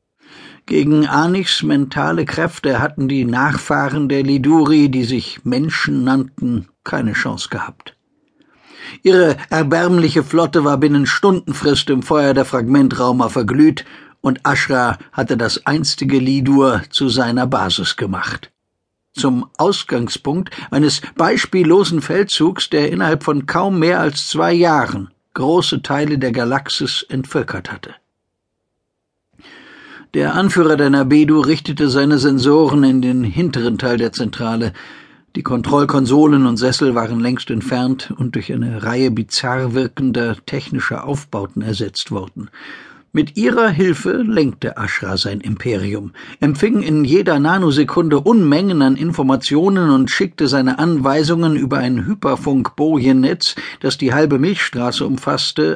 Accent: German